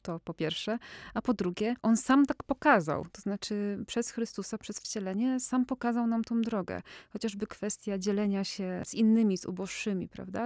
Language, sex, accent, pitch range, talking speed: Polish, female, native, 195-225 Hz, 170 wpm